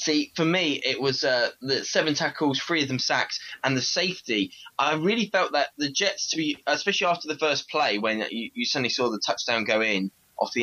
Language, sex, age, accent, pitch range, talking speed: English, male, 10-29, British, 115-150 Hz, 220 wpm